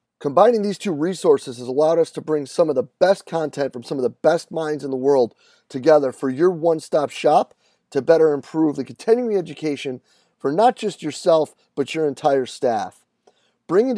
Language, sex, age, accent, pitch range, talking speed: English, male, 30-49, American, 145-190 Hz, 185 wpm